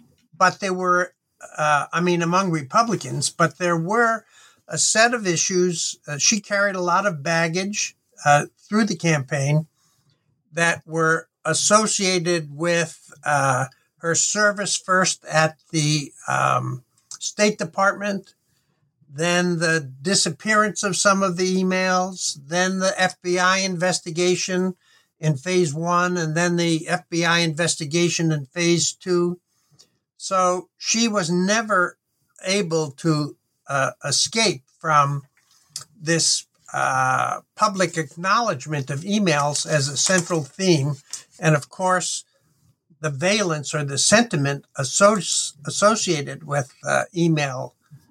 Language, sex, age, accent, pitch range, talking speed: English, male, 60-79, American, 150-185 Hz, 115 wpm